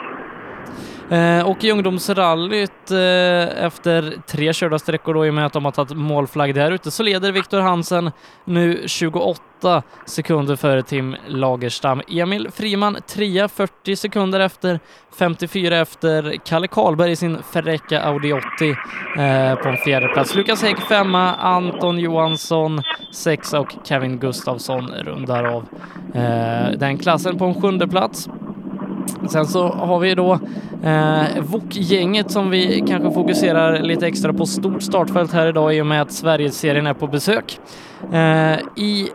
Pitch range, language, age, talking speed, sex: 150-190 Hz, Swedish, 20-39, 145 wpm, male